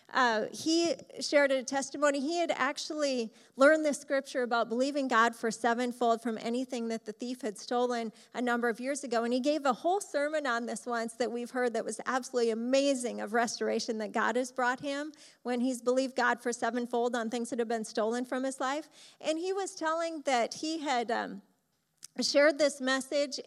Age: 30-49